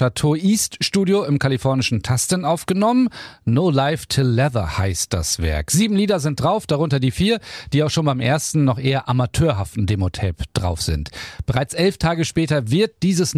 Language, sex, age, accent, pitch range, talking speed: German, male, 40-59, German, 125-170 Hz, 160 wpm